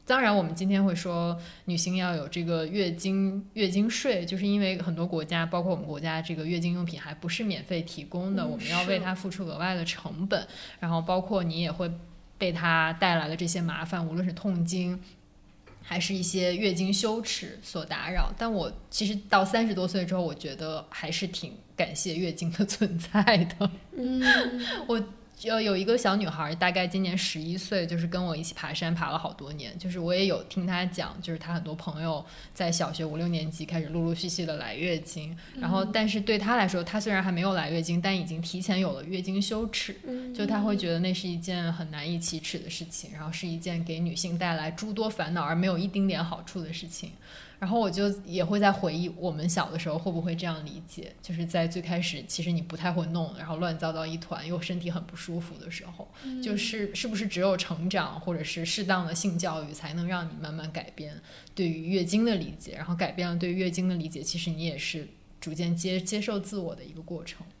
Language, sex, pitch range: English, female, 165-195 Hz